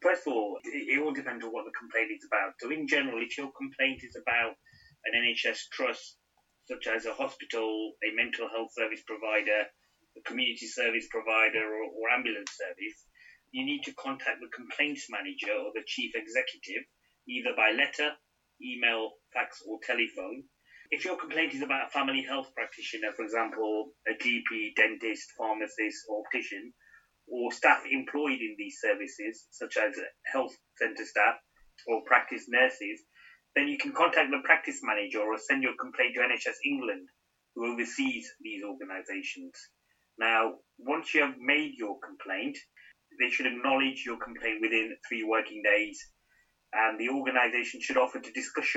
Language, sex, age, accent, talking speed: English, male, 30-49, British, 160 wpm